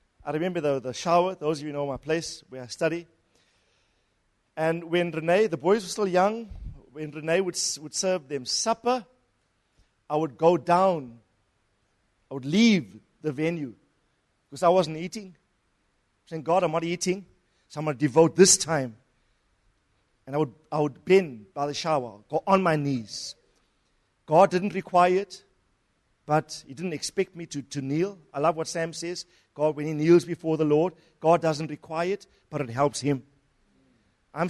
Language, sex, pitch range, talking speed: English, male, 125-175 Hz, 175 wpm